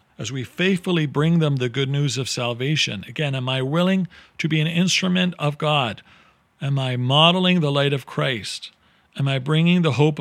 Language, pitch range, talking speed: English, 115-155 Hz, 190 wpm